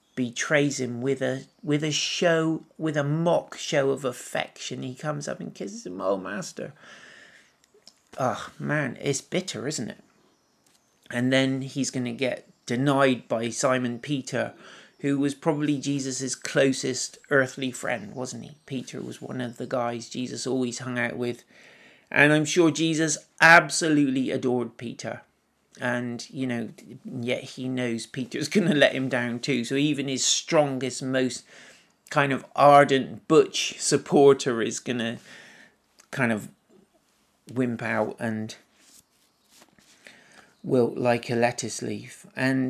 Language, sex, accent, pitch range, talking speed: English, male, British, 120-150 Hz, 140 wpm